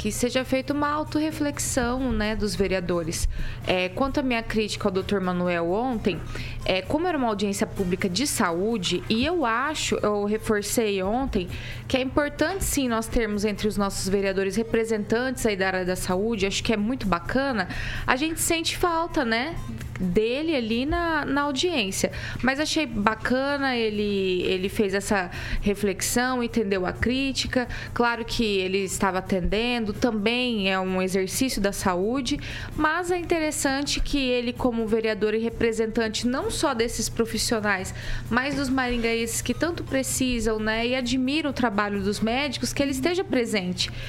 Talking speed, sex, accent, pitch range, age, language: 155 wpm, female, Brazilian, 200-265 Hz, 20-39, Portuguese